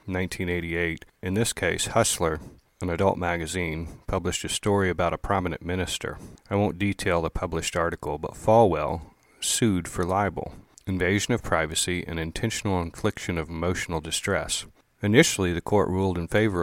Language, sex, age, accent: English, male, 40-59, American